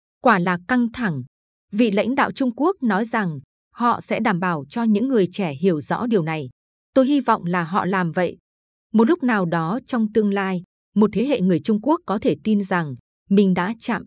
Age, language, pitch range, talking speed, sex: 20-39, Vietnamese, 180-230 Hz, 215 wpm, female